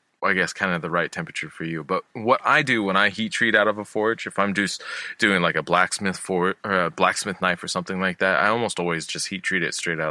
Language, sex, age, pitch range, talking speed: English, male, 20-39, 90-110 Hz, 275 wpm